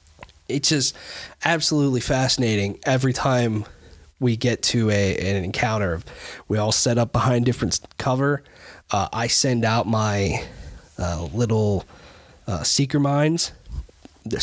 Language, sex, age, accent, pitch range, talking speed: English, male, 20-39, American, 100-140 Hz, 125 wpm